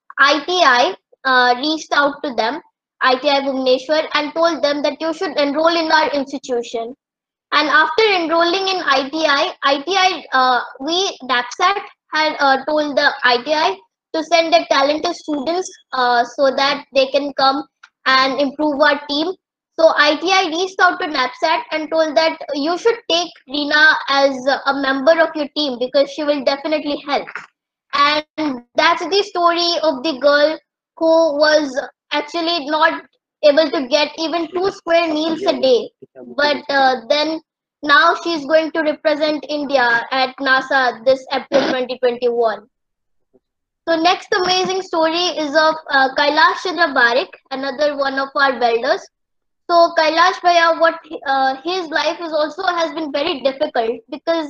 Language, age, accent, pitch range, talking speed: English, 20-39, Indian, 275-335 Hz, 145 wpm